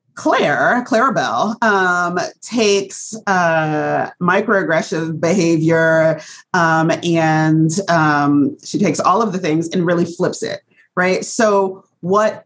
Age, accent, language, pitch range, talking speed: 40-59, American, English, 155-200 Hz, 105 wpm